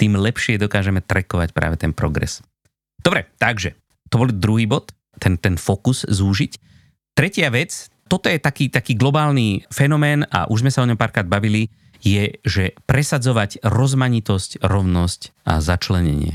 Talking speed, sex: 145 wpm, male